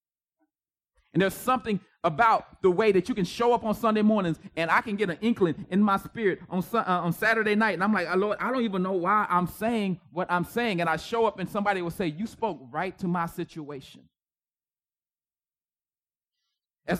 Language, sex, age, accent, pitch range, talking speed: English, male, 30-49, American, 155-210 Hz, 205 wpm